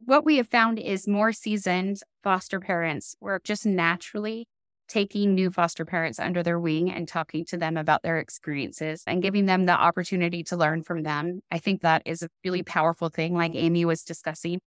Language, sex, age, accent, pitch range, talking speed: English, female, 20-39, American, 170-215 Hz, 190 wpm